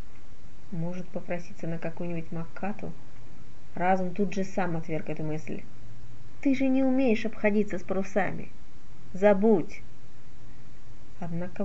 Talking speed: 110 wpm